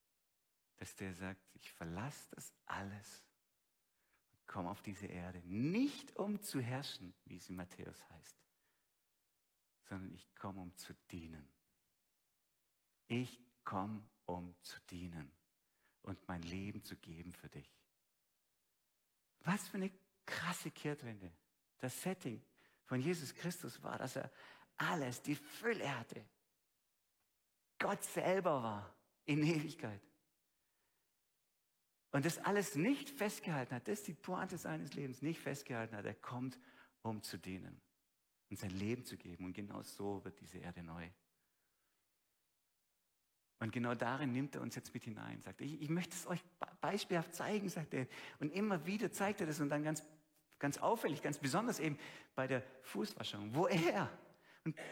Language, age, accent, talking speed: German, 50-69, German, 145 wpm